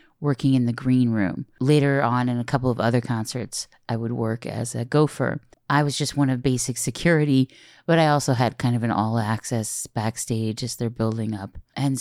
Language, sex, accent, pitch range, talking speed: English, female, American, 120-150 Hz, 200 wpm